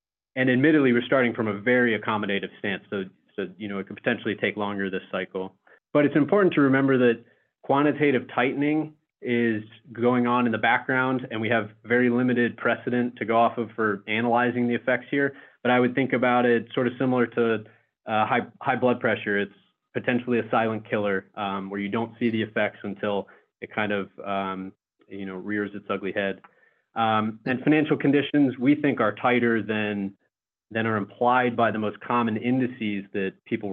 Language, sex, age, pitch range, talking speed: English, male, 30-49, 105-125 Hz, 190 wpm